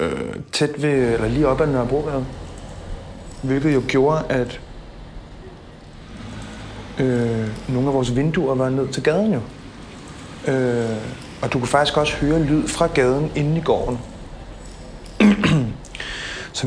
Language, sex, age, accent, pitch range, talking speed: Danish, male, 30-49, native, 115-155 Hz, 130 wpm